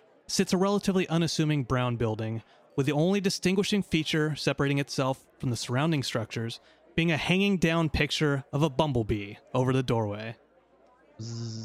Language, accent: English, American